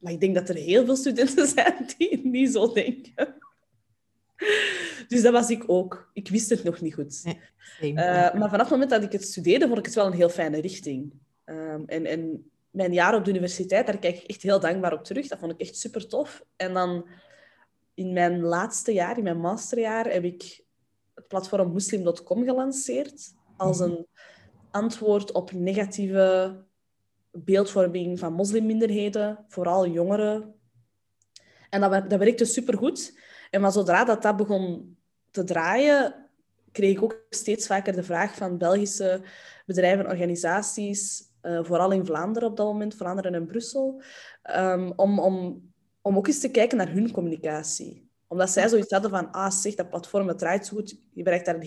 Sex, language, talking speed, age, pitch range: female, Dutch, 180 wpm, 20-39, 175-225 Hz